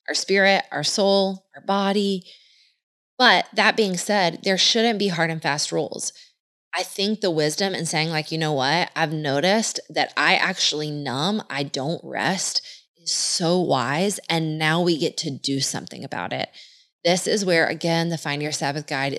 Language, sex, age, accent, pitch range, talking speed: English, female, 20-39, American, 150-195 Hz, 180 wpm